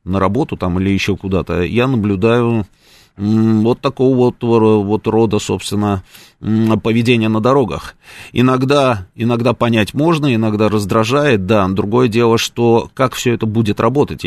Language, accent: Russian, native